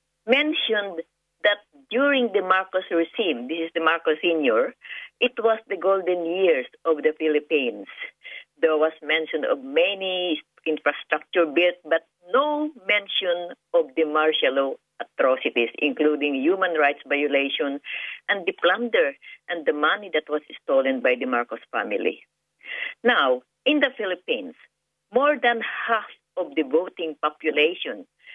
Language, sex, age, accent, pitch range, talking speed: English, female, 50-69, Filipino, 155-255 Hz, 130 wpm